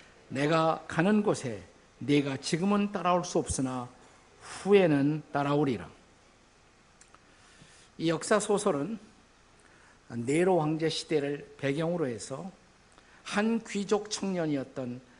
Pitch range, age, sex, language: 140-180 Hz, 50-69, male, Korean